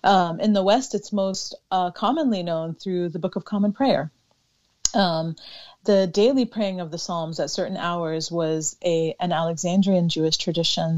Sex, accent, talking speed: female, American, 170 wpm